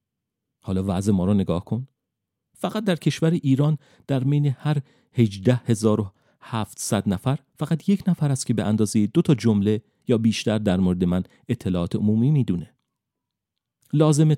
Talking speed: 160 wpm